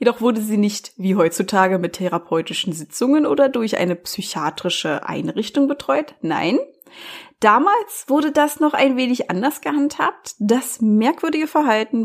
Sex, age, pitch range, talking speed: female, 30-49, 195-285 Hz, 135 wpm